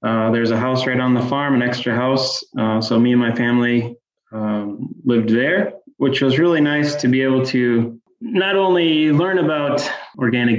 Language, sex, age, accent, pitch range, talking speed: English, male, 20-39, American, 120-135 Hz, 185 wpm